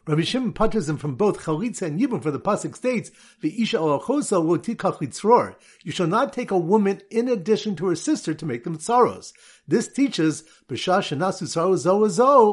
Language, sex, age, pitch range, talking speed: English, male, 50-69, 150-210 Hz, 135 wpm